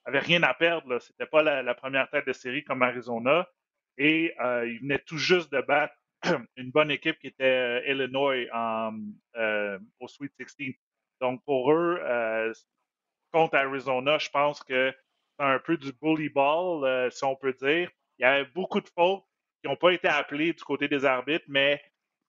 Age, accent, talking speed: 30-49, Canadian, 190 wpm